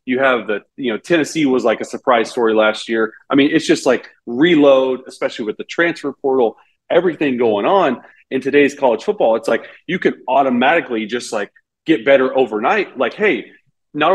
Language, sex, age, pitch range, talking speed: English, male, 30-49, 130-190 Hz, 185 wpm